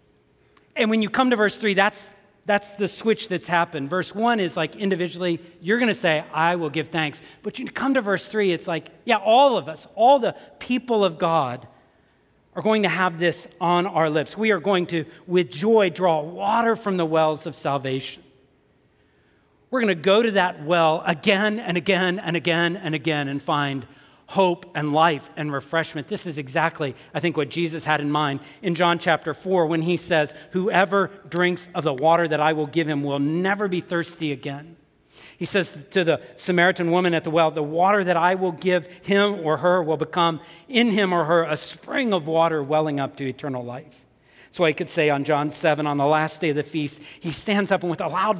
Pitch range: 155-195 Hz